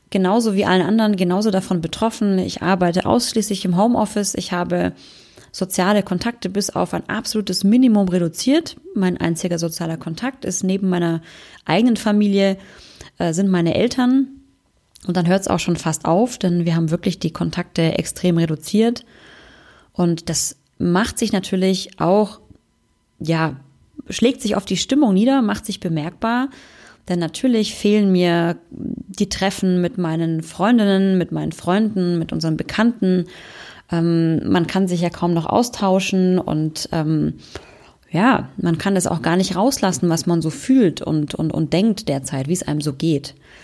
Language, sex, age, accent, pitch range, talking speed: German, female, 20-39, German, 170-205 Hz, 155 wpm